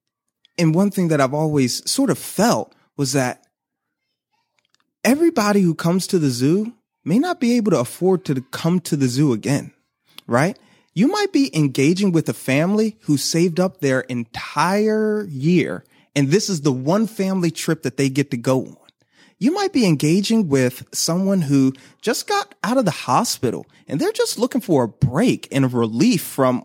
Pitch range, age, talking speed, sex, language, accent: 140-225 Hz, 30-49, 180 wpm, male, English, American